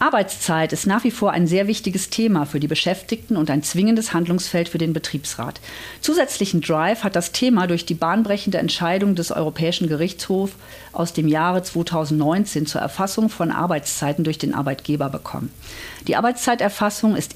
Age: 50-69